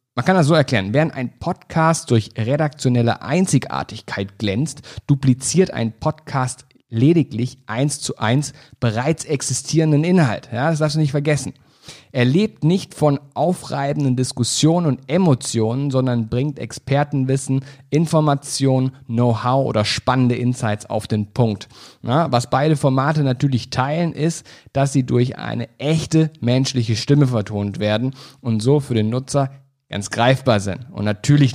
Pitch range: 115-150 Hz